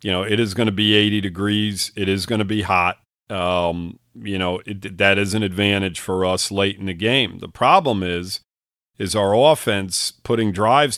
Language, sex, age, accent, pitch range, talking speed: English, male, 40-59, American, 95-110 Hz, 200 wpm